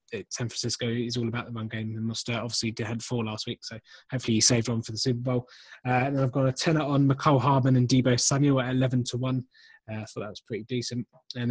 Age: 20-39